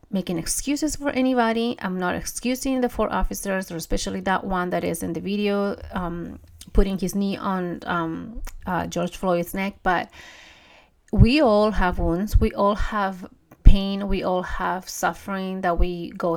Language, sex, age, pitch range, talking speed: English, female, 30-49, 175-210 Hz, 165 wpm